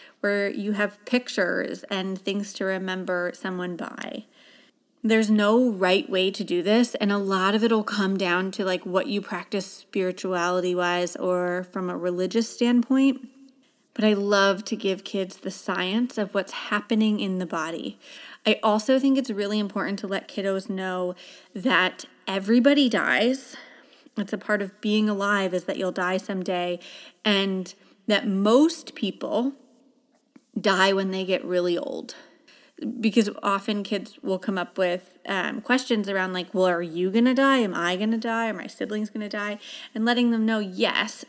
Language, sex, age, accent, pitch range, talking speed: English, female, 30-49, American, 190-240 Hz, 165 wpm